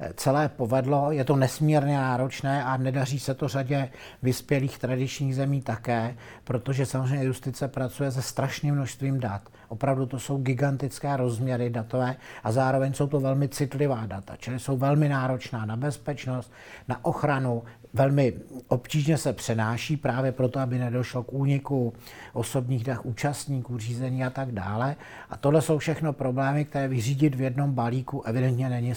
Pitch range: 125-140 Hz